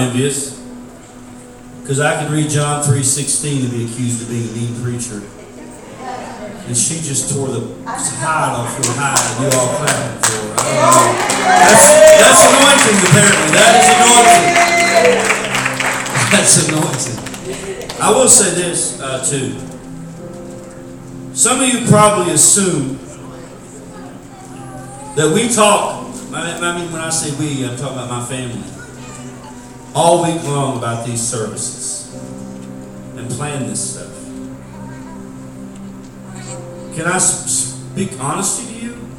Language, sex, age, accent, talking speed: English, male, 40-59, American, 120 wpm